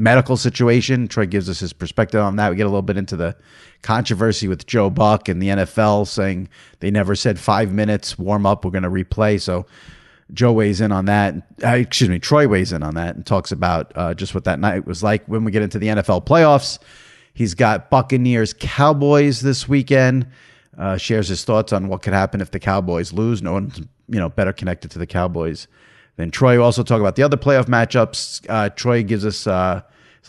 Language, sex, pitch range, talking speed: English, male, 95-120 Hz, 215 wpm